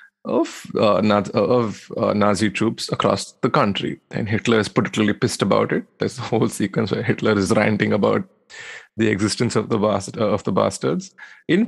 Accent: Indian